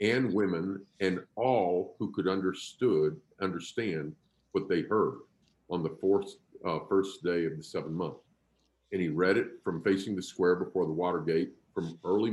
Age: 50-69